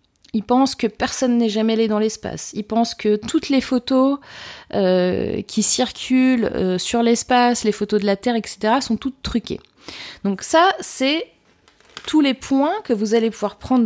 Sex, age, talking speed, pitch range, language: female, 30-49, 180 wpm, 195-245 Hz, French